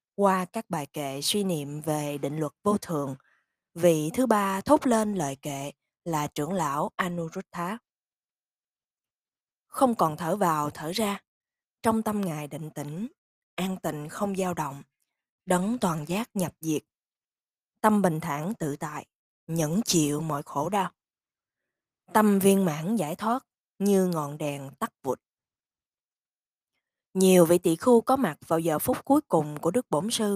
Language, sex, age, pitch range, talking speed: Vietnamese, female, 20-39, 155-220 Hz, 155 wpm